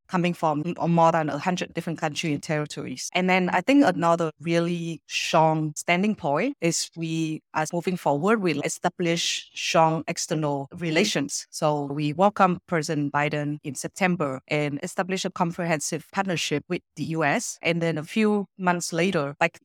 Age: 30-49